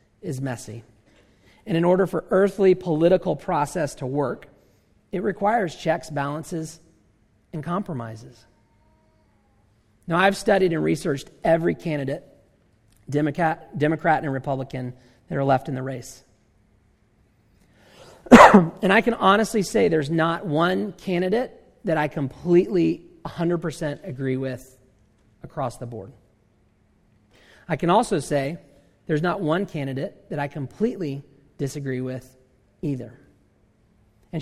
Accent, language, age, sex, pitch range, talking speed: American, English, 40-59, male, 120-185 Hz, 115 wpm